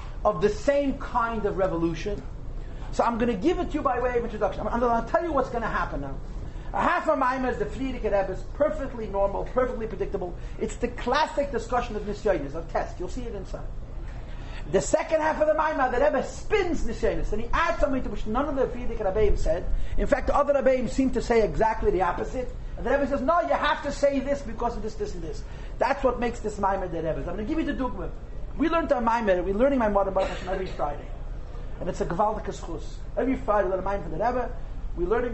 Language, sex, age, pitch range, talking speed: English, male, 40-59, 205-280 Hz, 240 wpm